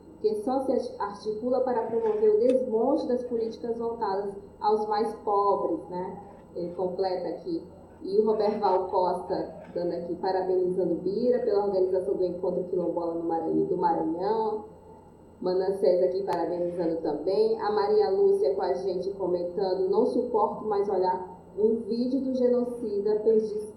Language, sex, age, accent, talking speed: Portuguese, female, 20-39, Brazilian, 140 wpm